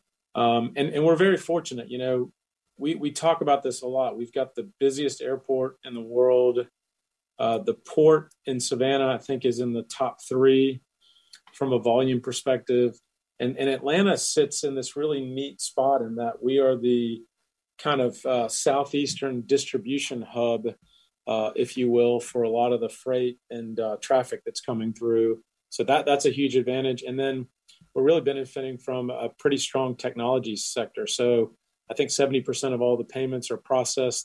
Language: English